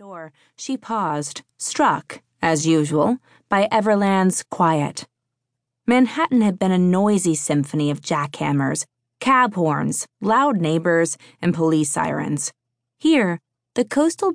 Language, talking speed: English, 110 wpm